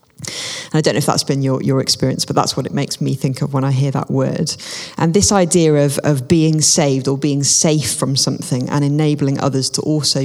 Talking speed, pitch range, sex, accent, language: 235 wpm, 135-155 Hz, female, British, English